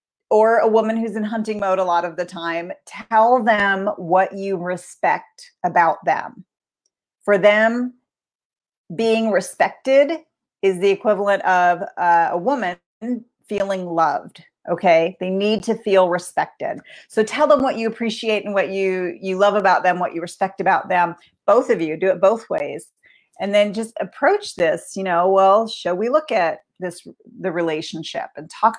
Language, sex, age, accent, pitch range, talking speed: English, female, 40-59, American, 180-220 Hz, 165 wpm